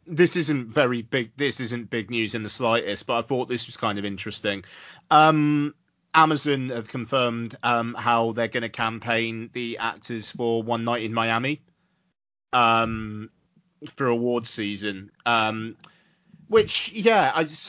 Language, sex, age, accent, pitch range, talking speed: English, male, 30-49, British, 110-145 Hz, 155 wpm